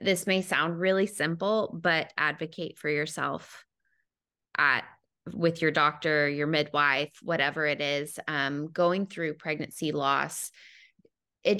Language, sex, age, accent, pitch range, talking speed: English, female, 20-39, American, 155-185 Hz, 125 wpm